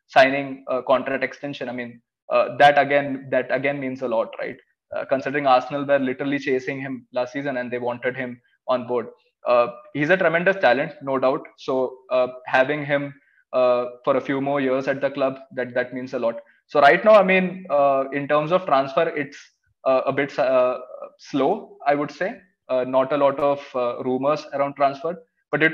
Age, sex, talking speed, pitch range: 20-39, male, 200 wpm, 130-155 Hz